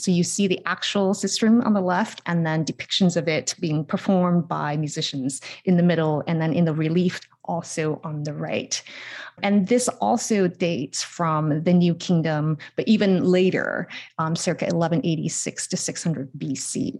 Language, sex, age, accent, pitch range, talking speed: English, female, 30-49, American, 160-200 Hz, 165 wpm